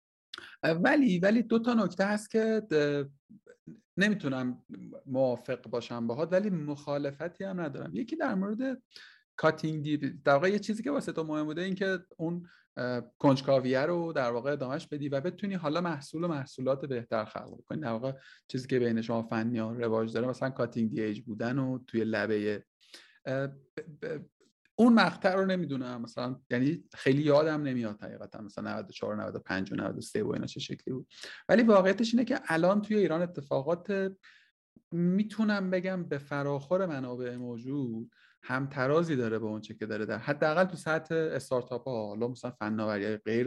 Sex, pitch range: male, 125-185 Hz